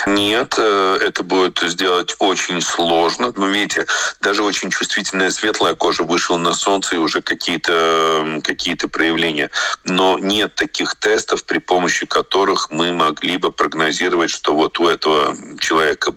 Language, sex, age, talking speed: Russian, male, 40-59, 135 wpm